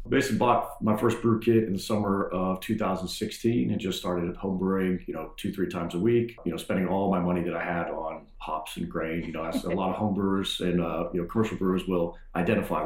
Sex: male